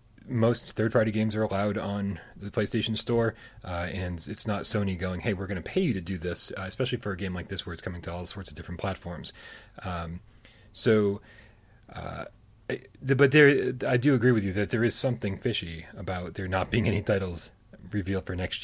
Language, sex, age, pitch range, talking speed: English, male, 30-49, 95-115 Hz, 215 wpm